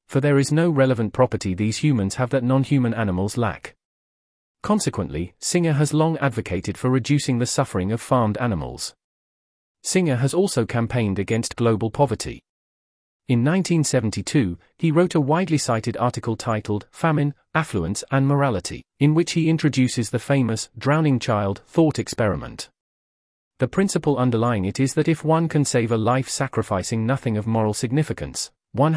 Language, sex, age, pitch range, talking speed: English, male, 30-49, 105-140 Hz, 150 wpm